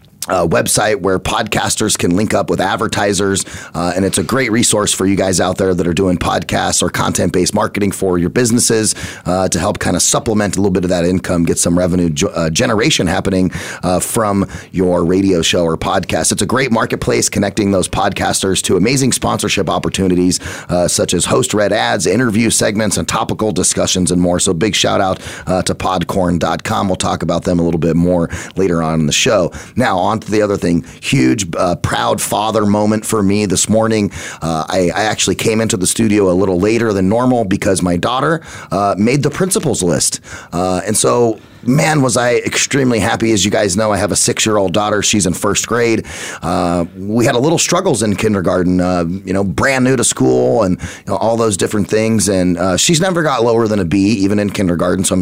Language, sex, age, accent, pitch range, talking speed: English, male, 30-49, American, 90-110 Hz, 210 wpm